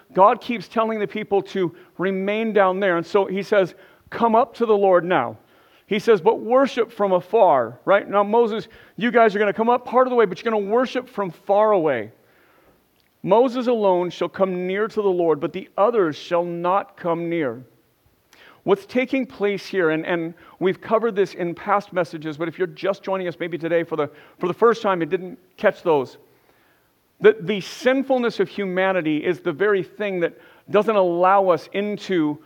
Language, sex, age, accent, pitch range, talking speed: English, male, 50-69, American, 175-215 Hz, 195 wpm